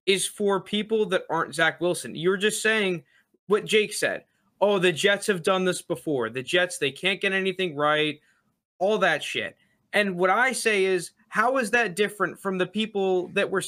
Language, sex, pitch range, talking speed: English, male, 160-200 Hz, 195 wpm